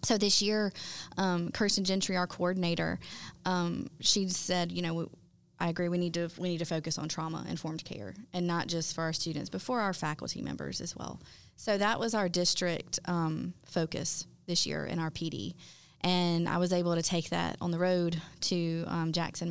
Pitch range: 165-180 Hz